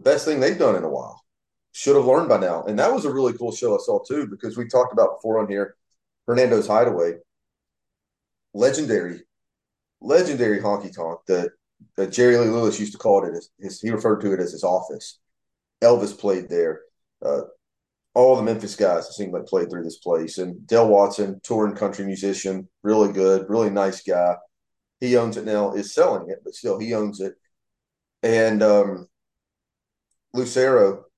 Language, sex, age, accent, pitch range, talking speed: English, male, 30-49, American, 100-130 Hz, 180 wpm